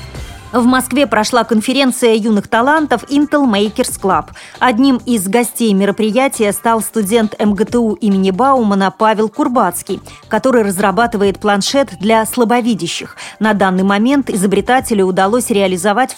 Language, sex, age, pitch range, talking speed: Russian, female, 30-49, 200-250 Hz, 115 wpm